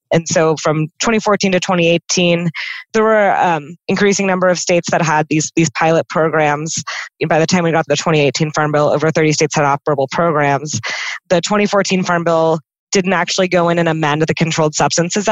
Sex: female